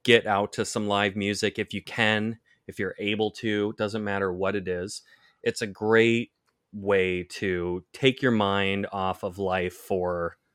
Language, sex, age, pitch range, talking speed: English, male, 30-49, 95-115 Hz, 170 wpm